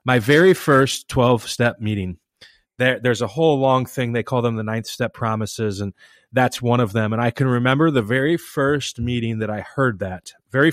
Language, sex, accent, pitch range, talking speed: English, male, American, 105-130 Hz, 200 wpm